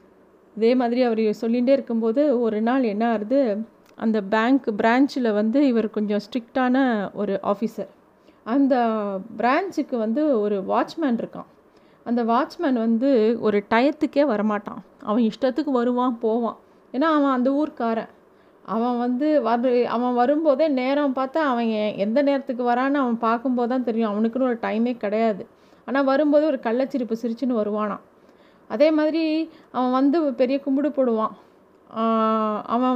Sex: female